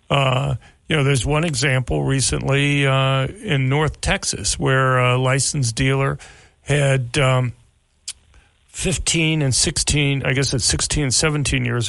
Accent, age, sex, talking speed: American, 40-59, male, 135 wpm